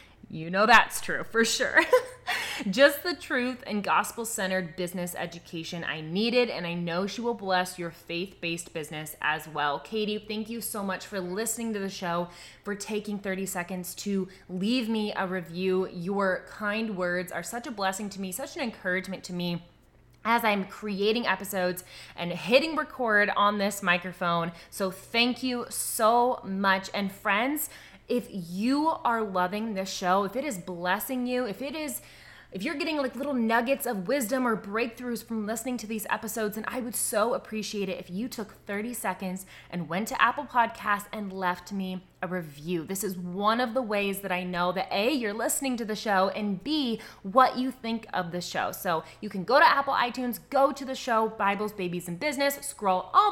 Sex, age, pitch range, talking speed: female, 20-39, 185-235 Hz, 190 wpm